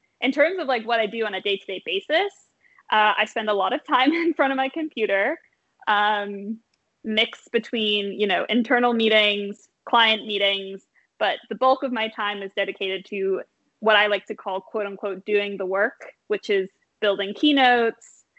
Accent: American